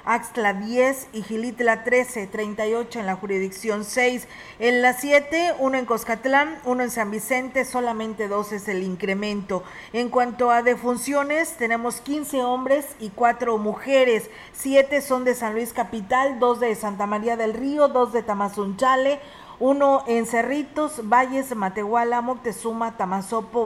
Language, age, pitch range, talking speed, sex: Spanish, 40-59, 220-260 Hz, 145 wpm, female